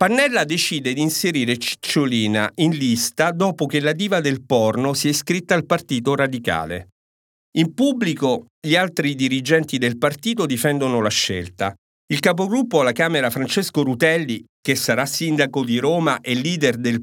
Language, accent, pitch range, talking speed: Italian, native, 125-185 Hz, 150 wpm